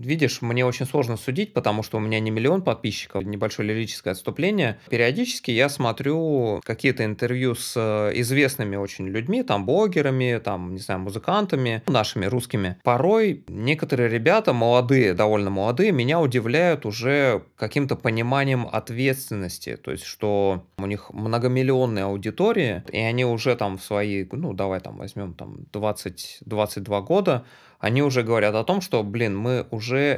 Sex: male